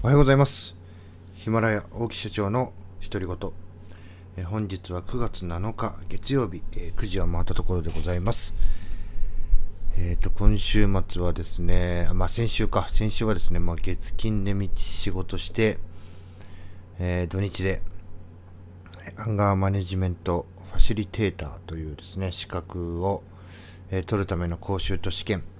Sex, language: male, Japanese